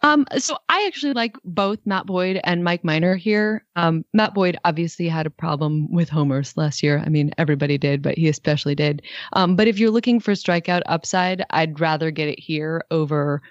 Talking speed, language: 200 wpm, English